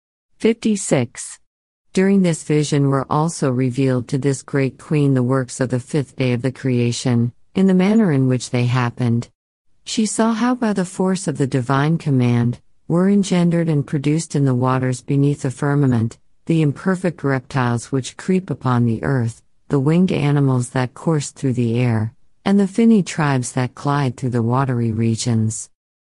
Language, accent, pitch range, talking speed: English, American, 125-170 Hz, 170 wpm